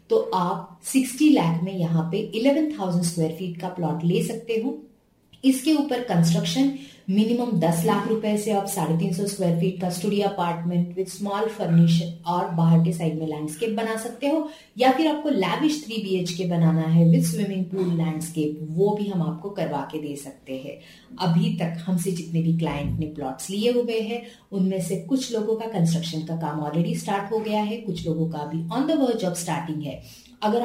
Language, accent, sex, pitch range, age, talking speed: Hindi, native, female, 165-225 Hz, 30-49, 195 wpm